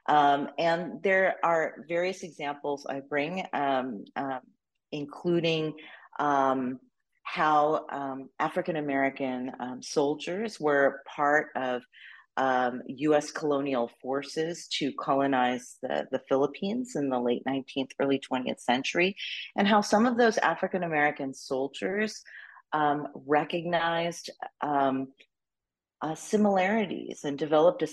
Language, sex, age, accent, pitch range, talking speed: English, female, 40-59, American, 135-175 Hz, 105 wpm